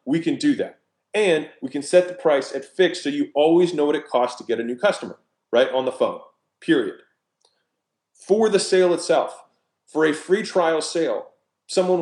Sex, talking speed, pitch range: male, 195 wpm, 130-185 Hz